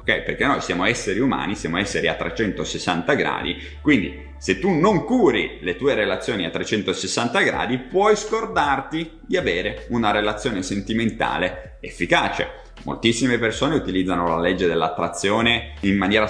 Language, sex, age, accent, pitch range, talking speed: Italian, male, 30-49, native, 90-130 Hz, 140 wpm